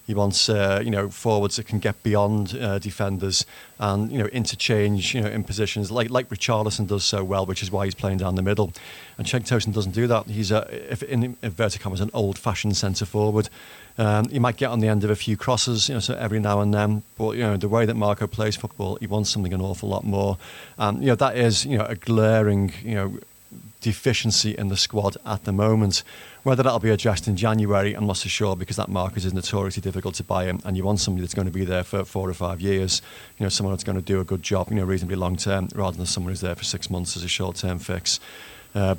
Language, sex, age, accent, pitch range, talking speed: English, male, 40-59, British, 95-110 Hz, 250 wpm